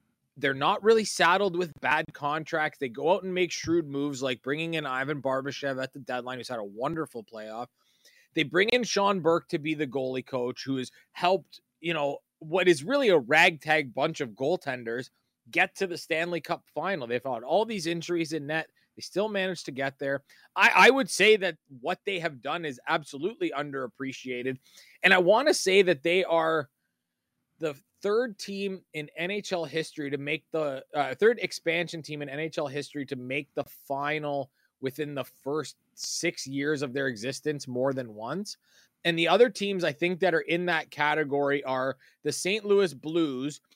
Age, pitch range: 20-39, 140-170 Hz